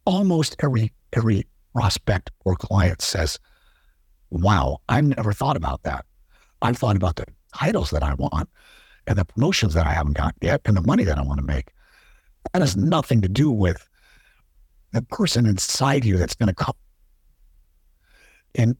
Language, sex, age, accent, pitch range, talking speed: English, male, 60-79, American, 90-135 Hz, 165 wpm